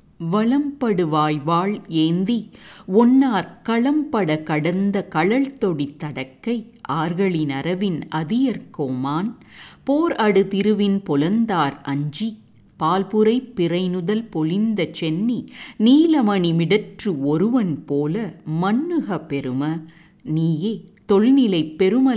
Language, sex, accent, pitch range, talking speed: English, female, Indian, 155-235 Hz, 85 wpm